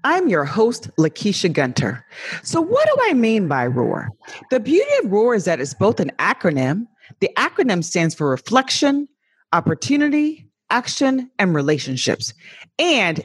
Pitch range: 165-265 Hz